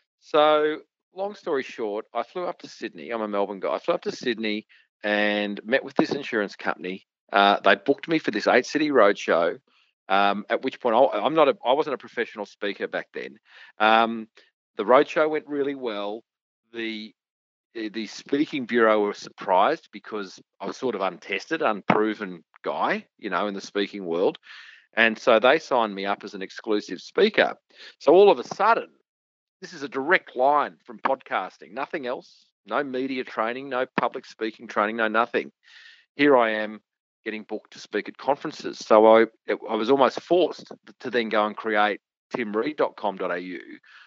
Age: 40-59